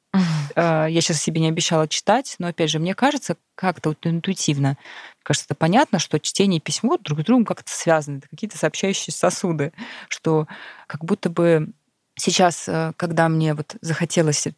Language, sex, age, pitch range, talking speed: Russian, female, 20-39, 150-175 Hz, 165 wpm